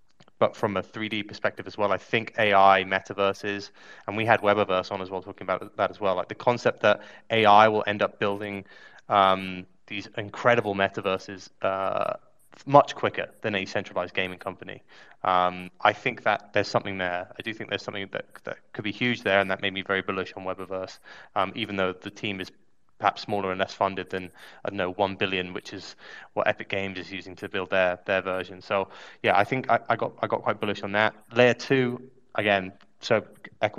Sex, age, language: male, 20-39, English